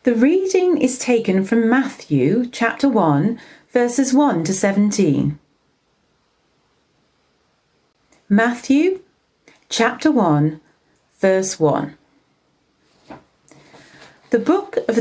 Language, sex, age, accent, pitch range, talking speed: English, female, 40-59, British, 190-265 Hz, 80 wpm